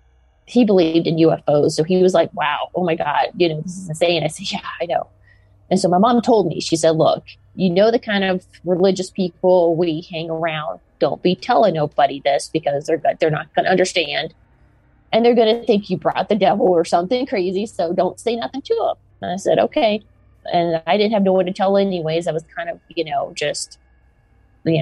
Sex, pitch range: female, 165-205 Hz